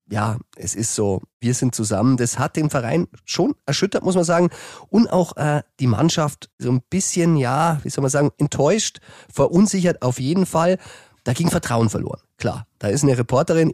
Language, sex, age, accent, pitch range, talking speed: German, male, 30-49, German, 115-140 Hz, 190 wpm